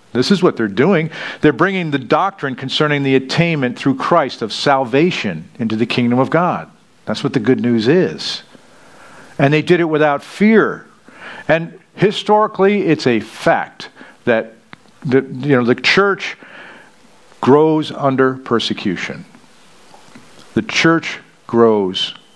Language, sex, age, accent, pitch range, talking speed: English, male, 50-69, American, 125-160 Hz, 130 wpm